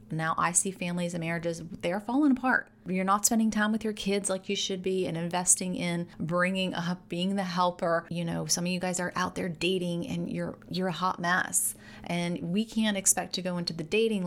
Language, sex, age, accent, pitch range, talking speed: English, female, 30-49, American, 165-195 Hz, 225 wpm